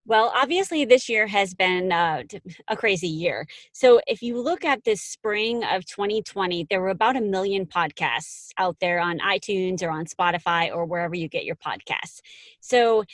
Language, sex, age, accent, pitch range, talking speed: English, female, 30-49, American, 180-245 Hz, 180 wpm